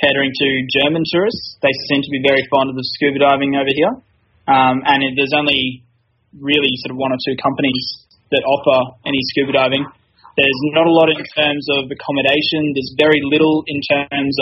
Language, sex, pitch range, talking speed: English, male, 130-150 Hz, 190 wpm